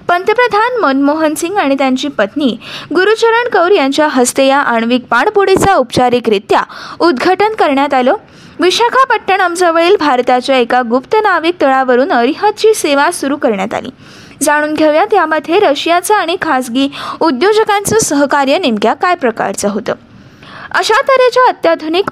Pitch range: 265-375 Hz